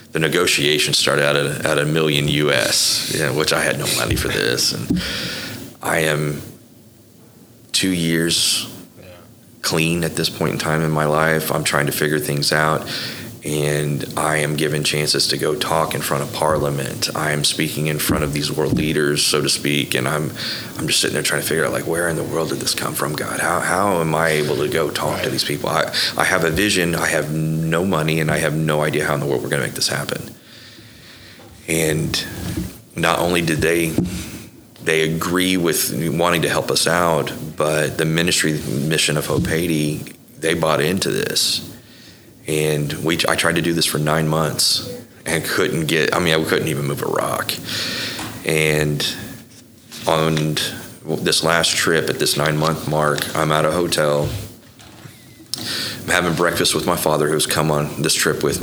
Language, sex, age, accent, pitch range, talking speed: English, male, 30-49, American, 75-80 Hz, 190 wpm